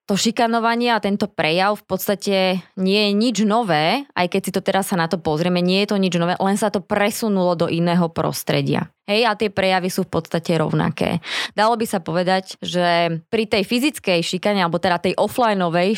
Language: Slovak